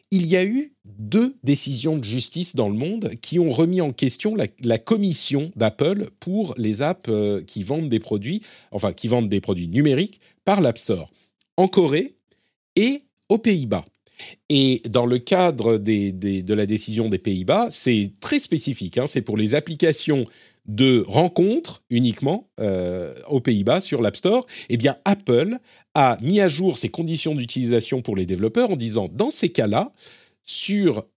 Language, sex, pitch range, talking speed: French, male, 115-185 Hz, 170 wpm